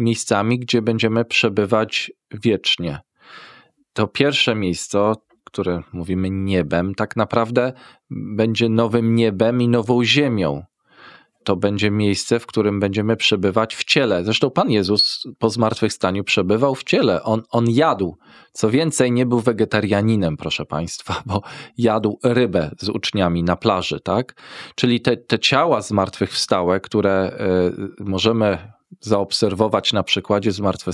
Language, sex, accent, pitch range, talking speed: Polish, male, native, 100-120 Hz, 125 wpm